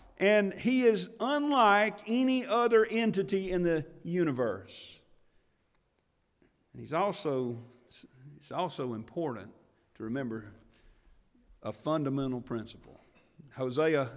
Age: 50-69